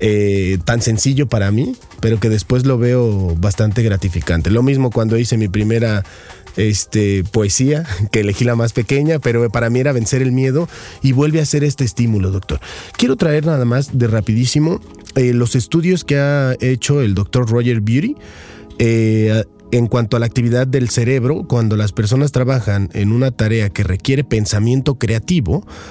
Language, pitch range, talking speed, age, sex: Spanish, 105-135 Hz, 170 wpm, 30-49, male